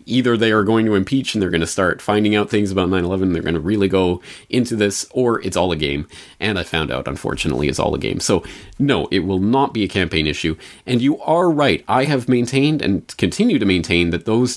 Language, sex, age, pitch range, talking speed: English, male, 30-49, 85-120 Hz, 245 wpm